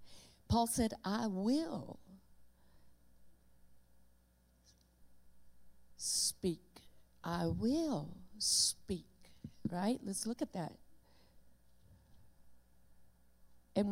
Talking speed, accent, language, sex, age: 60 wpm, American, English, female, 50-69